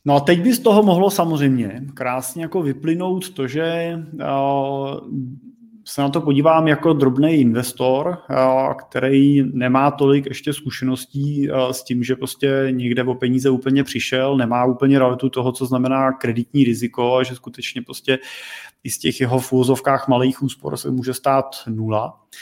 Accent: native